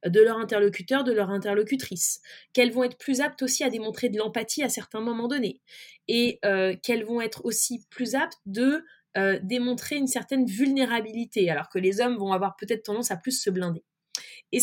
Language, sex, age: French, female, 20-39